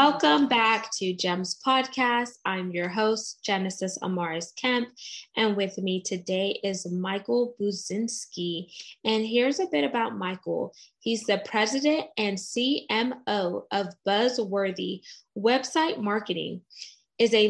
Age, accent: 10-29, American